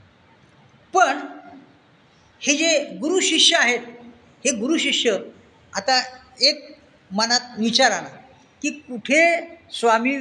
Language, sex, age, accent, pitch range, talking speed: Marathi, female, 50-69, native, 220-295 Hz, 90 wpm